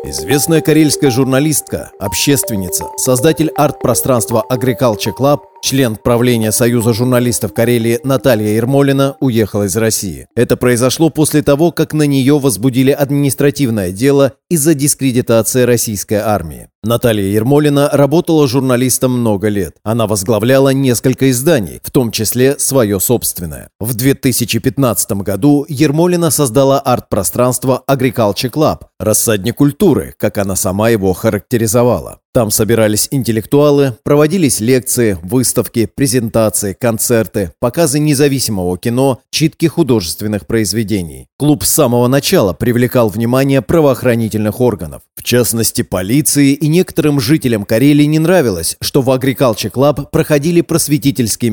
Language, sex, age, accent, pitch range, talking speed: Russian, male, 30-49, native, 110-140 Hz, 115 wpm